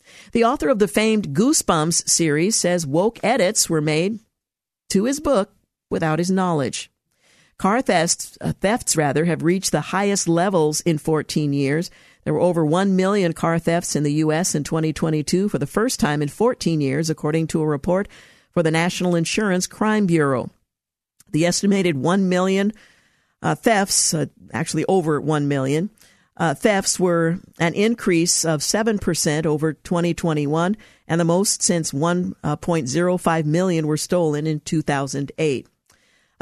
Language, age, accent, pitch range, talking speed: English, 50-69, American, 160-195 Hz, 150 wpm